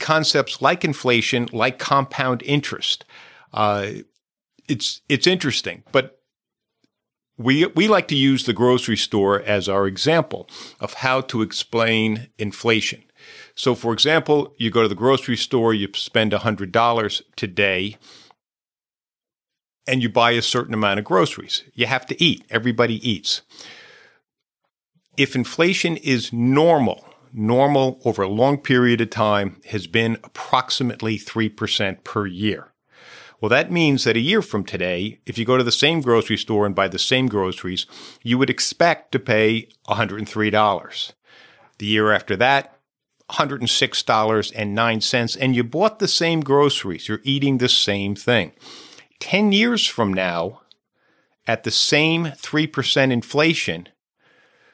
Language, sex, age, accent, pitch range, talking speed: English, male, 50-69, American, 105-140 Hz, 135 wpm